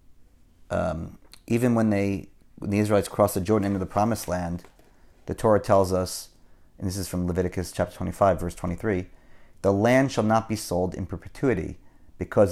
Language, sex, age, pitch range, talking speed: English, male, 30-49, 90-105 Hz, 175 wpm